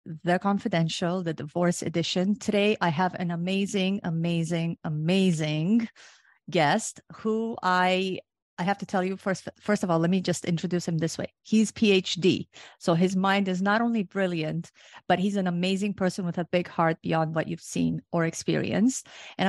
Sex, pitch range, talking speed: female, 170-205 Hz, 170 wpm